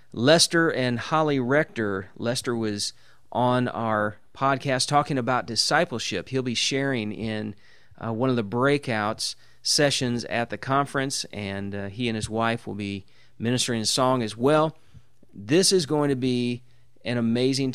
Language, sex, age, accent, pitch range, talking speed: English, male, 40-59, American, 110-135 Hz, 150 wpm